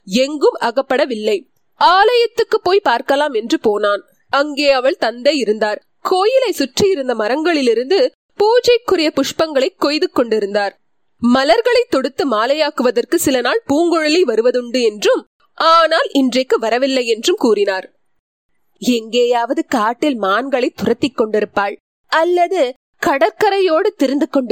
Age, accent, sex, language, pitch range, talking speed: 20-39, native, female, Tamil, 235-330 Hz, 95 wpm